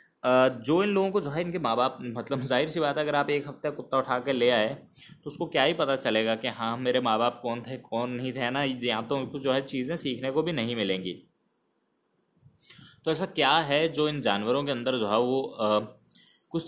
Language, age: Hindi, 20-39